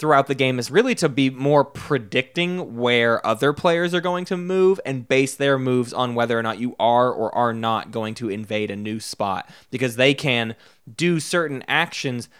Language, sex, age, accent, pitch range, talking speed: English, male, 20-39, American, 115-140 Hz, 200 wpm